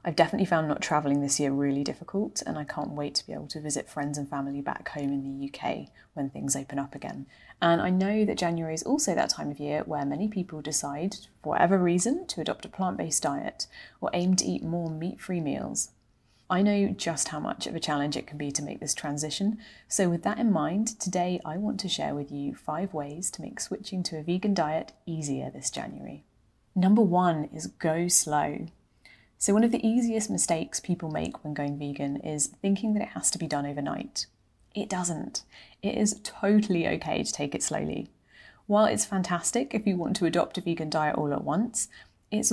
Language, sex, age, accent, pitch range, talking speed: English, female, 30-49, British, 150-195 Hz, 210 wpm